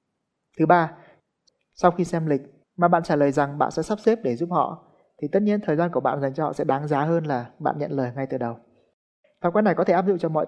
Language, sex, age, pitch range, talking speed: Vietnamese, male, 20-39, 140-180 Hz, 275 wpm